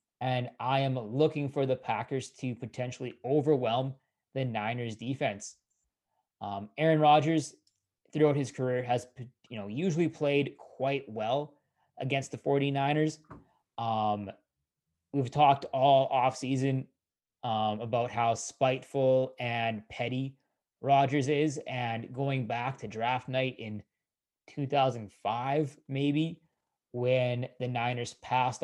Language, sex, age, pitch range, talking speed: English, male, 20-39, 120-140 Hz, 115 wpm